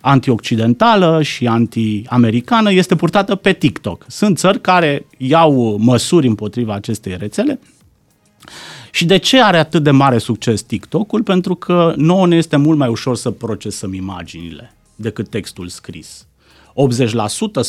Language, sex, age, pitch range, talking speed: Romanian, male, 30-49, 115-175 Hz, 130 wpm